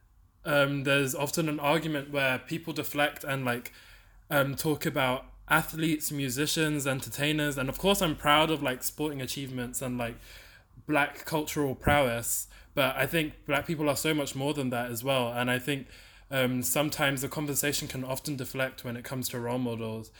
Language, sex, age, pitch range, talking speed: English, male, 20-39, 120-140 Hz, 175 wpm